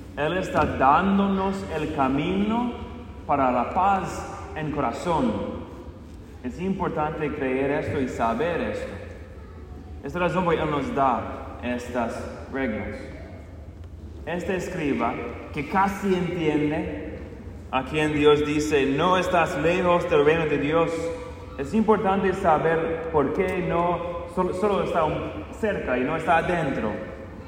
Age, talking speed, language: 30-49, 125 wpm, English